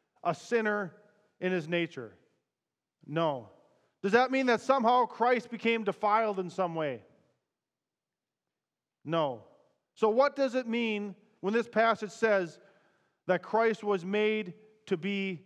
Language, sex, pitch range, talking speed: English, male, 200-245 Hz, 130 wpm